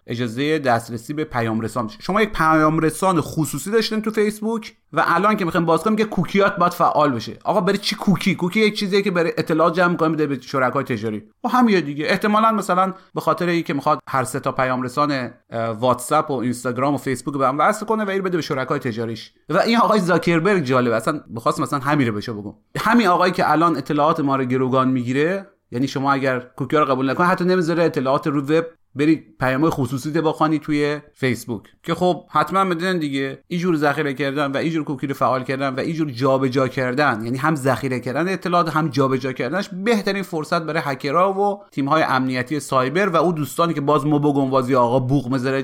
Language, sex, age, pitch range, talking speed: Persian, male, 30-49, 135-185 Hz, 200 wpm